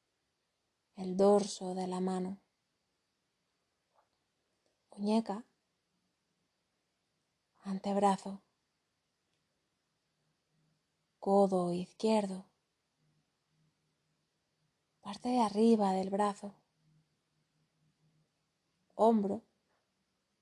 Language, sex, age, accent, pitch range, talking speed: Spanish, female, 30-49, Spanish, 180-205 Hz, 45 wpm